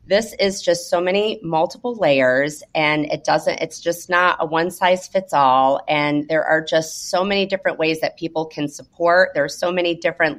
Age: 30-49